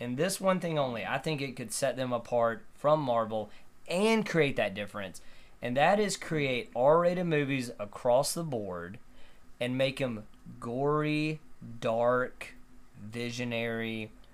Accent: American